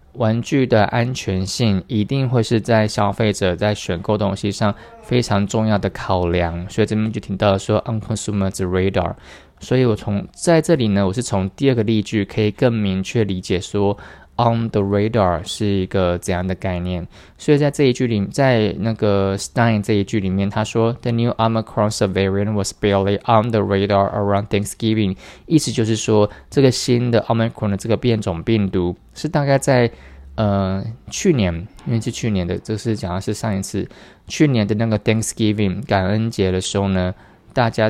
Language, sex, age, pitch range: Chinese, male, 20-39, 100-120 Hz